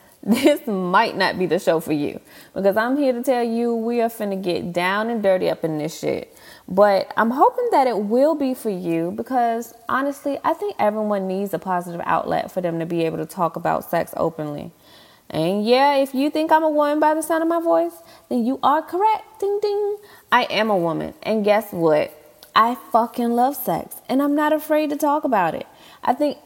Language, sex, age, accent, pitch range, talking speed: English, female, 20-39, American, 190-295 Hz, 215 wpm